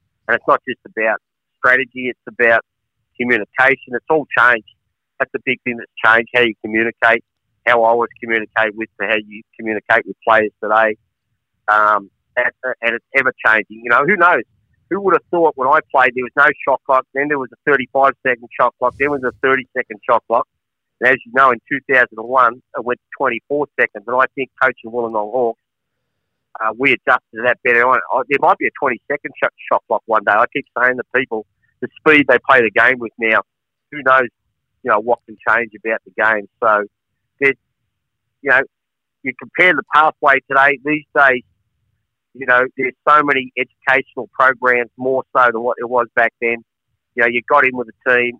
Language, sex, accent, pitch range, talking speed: English, male, Australian, 110-130 Hz, 195 wpm